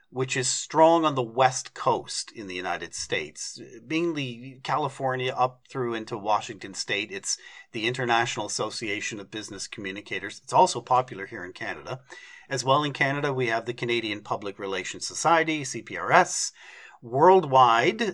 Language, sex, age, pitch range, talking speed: English, male, 40-59, 120-150 Hz, 145 wpm